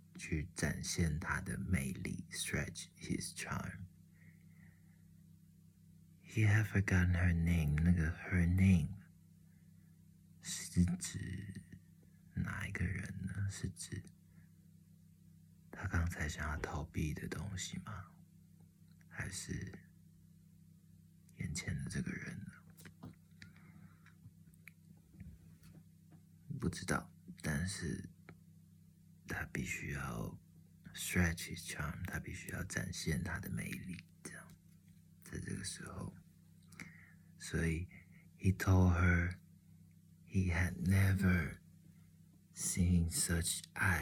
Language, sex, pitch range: Chinese, male, 85-90 Hz